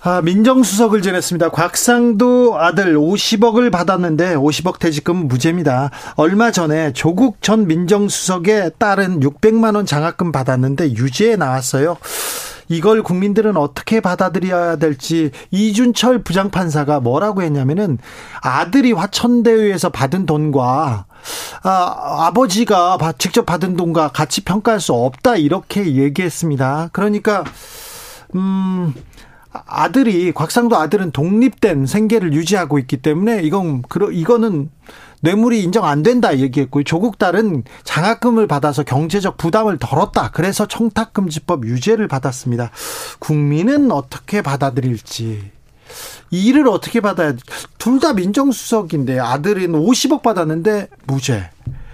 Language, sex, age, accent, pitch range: Korean, male, 40-59, native, 150-220 Hz